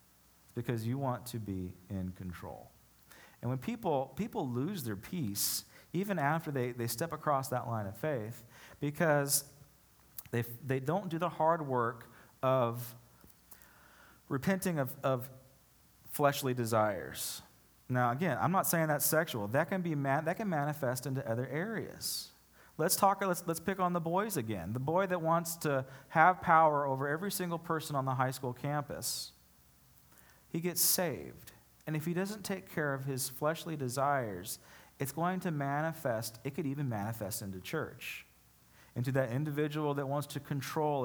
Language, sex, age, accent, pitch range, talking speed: English, male, 40-59, American, 125-160 Hz, 160 wpm